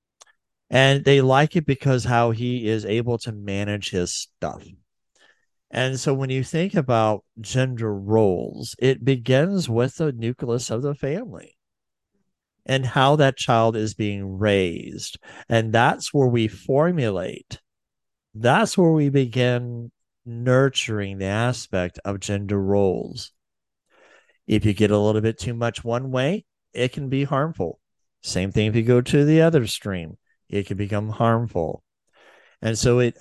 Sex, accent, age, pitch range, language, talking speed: male, American, 50-69, 105-135 Hz, English, 145 wpm